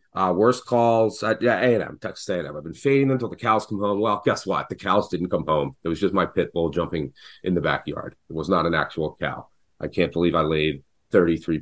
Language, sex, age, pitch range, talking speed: English, male, 30-49, 80-125 Hz, 240 wpm